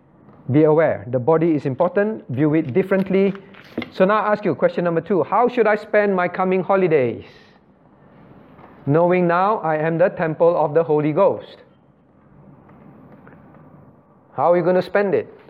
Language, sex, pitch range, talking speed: English, male, 140-175 Hz, 160 wpm